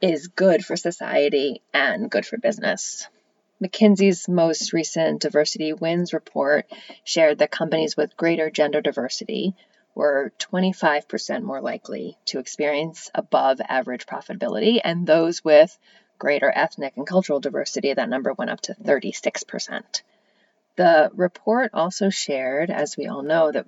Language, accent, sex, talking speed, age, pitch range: English, American, female, 135 wpm, 30-49, 145-190 Hz